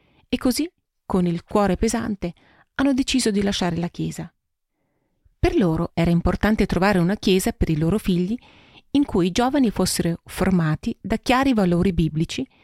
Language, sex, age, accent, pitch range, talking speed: Italian, female, 40-59, native, 165-225 Hz, 155 wpm